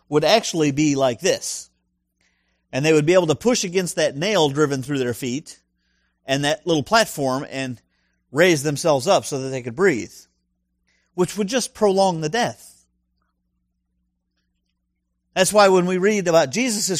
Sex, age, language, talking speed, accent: male, 50-69, English, 160 wpm, American